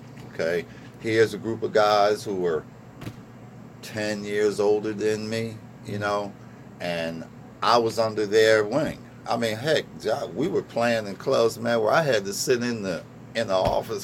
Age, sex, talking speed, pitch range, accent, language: 50-69, male, 170 wpm, 105-125 Hz, American, English